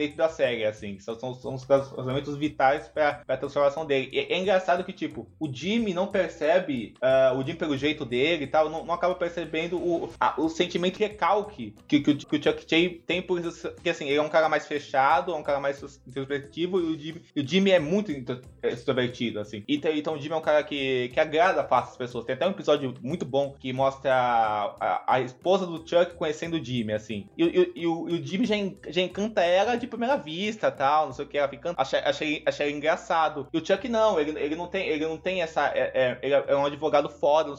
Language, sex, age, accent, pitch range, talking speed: Portuguese, male, 20-39, Brazilian, 135-175 Hz, 245 wpm